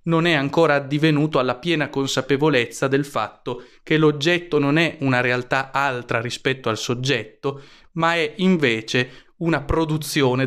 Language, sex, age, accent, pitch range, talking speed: Italian, male, 30-49, native, 125-155 Hz, 140 wpm